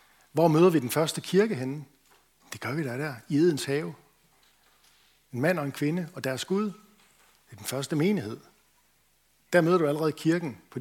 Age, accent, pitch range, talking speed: 60-79, native, 130-175 Hz, 190 wpm